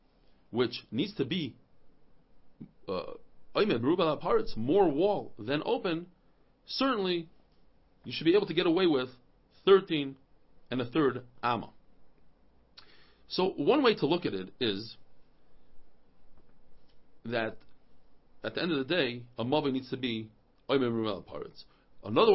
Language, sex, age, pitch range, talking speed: English, male, 40-59, 135-205 Hz, 120 wpm